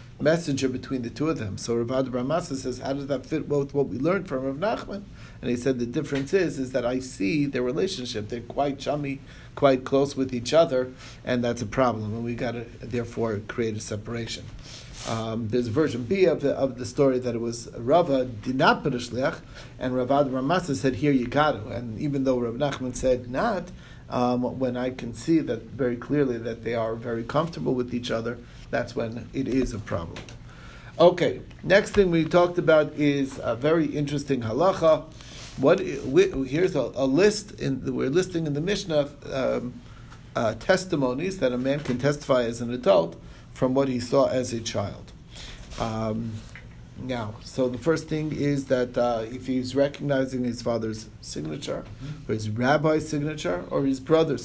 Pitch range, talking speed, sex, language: 120-140 Hz, 185 wpm, male, English